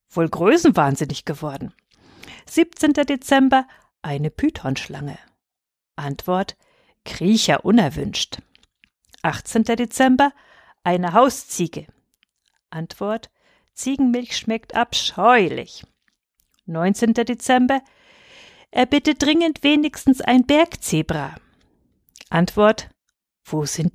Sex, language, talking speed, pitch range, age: female, German, 75 wpm, 165-260 Hz, 50-69